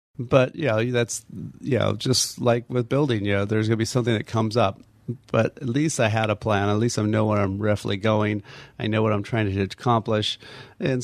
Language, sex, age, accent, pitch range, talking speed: English, male, 30-49, American, 105-120 Hz, 225 wpm